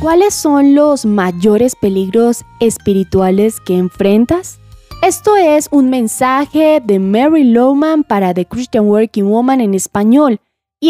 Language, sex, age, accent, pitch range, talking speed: Spanish, female, 20-39, Colombian, 205-300 Hz, 125 wpm